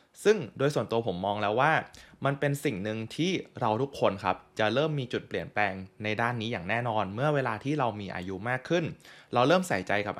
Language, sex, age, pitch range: Thai, male, 20-39, 105-145 Hz